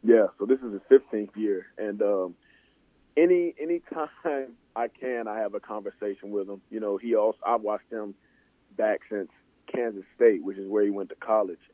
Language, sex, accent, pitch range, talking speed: English, male, American, 100-120 Hz, 195 wpm